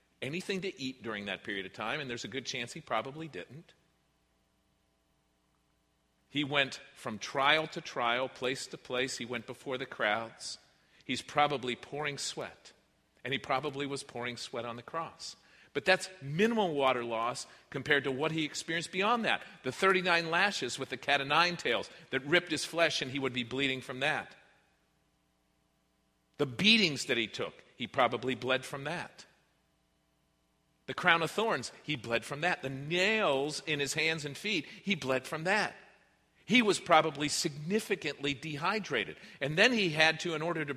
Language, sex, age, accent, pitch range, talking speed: English, male, 40-59, American, 120-170 Hz, 170 wpm